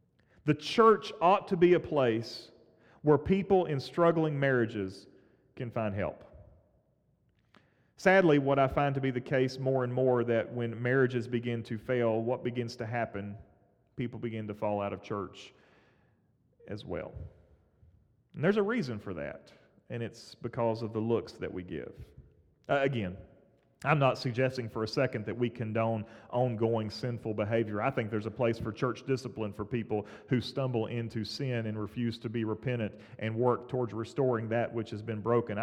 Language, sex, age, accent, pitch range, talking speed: English, male, 40-59, American, 110-135 Hz, 170 wpm